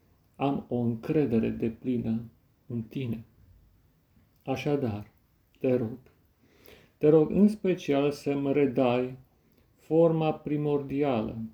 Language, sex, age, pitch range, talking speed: Romanian, male, 40-59, 115-145 Hz, 95 wpm